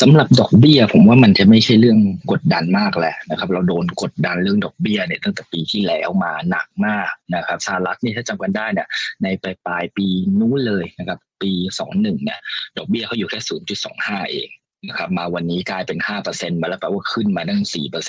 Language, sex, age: Thai, male, 20-39